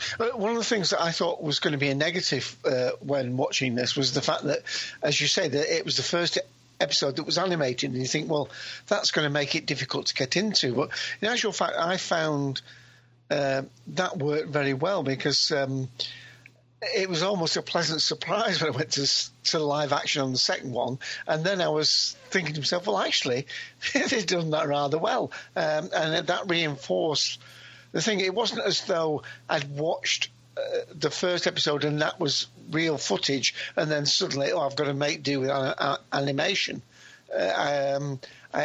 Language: English